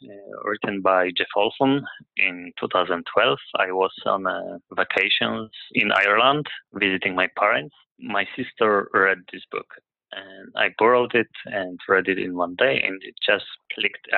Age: 30-49